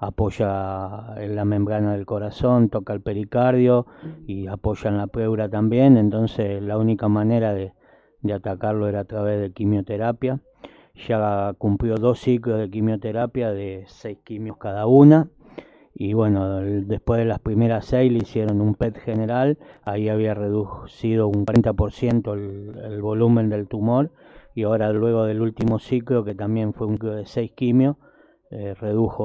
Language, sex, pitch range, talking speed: Spanish, male, 105-115 Hz, 160 wpm